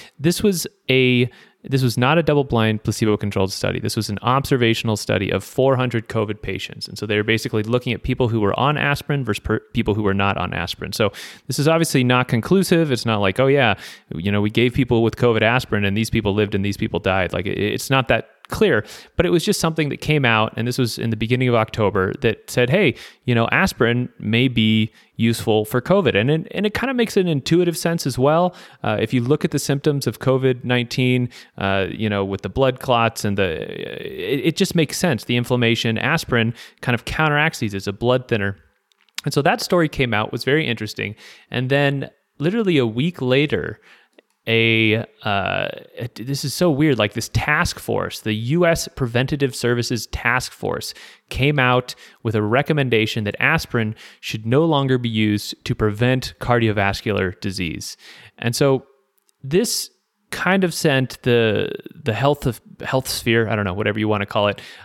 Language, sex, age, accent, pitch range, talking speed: English, male, 30-49, American, 110-145 Hz, 200 wpm